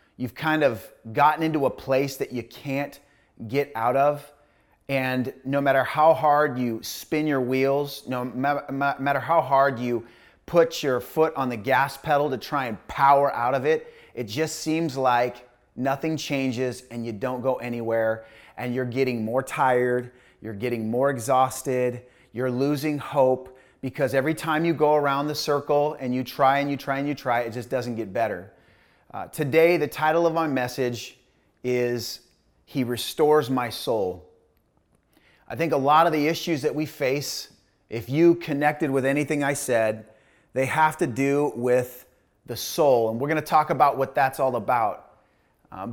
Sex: male